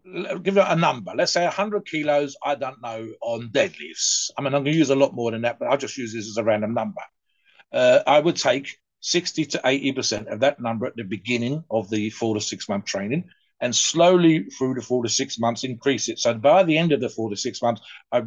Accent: British